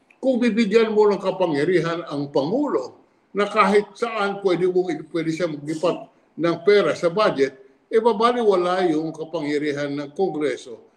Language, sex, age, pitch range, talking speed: English, male, 50-69, 150-220 Hz, 135 wpm